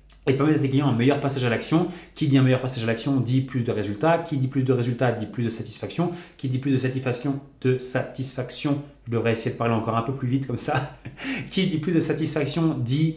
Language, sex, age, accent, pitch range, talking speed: French, male, 30-49, French, 120-150 Hz, 255 wpm